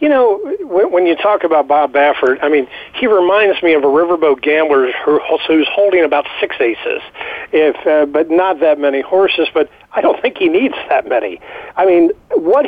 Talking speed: 190 wpm